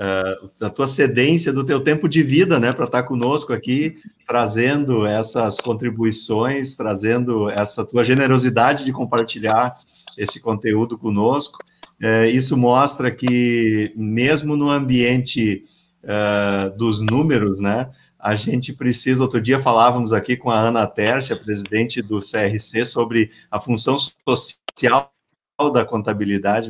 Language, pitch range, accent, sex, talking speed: Portuguese, 110-135 Hz, Brazilian, male, 130 wpm